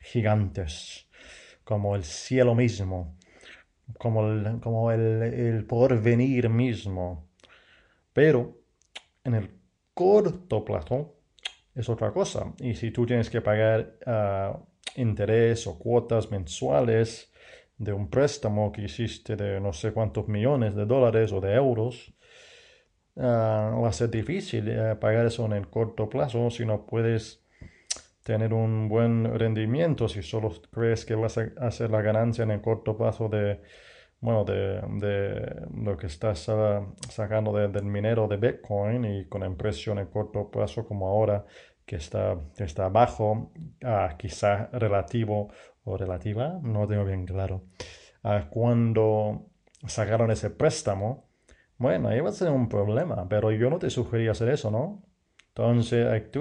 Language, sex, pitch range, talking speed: English, male, 105-120 Hz, 145 wpm